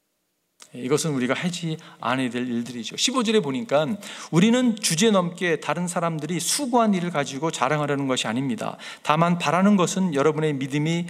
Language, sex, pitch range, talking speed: English, male, 150-210 Hz, 130 wpm